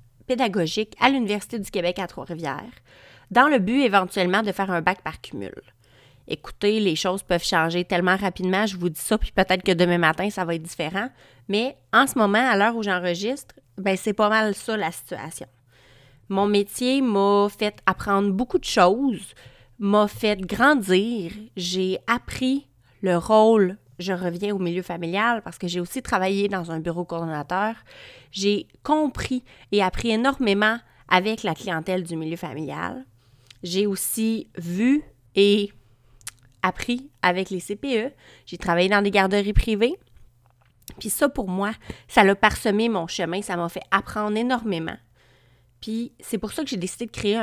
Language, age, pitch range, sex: French, 30-49, 170-220 Hz, female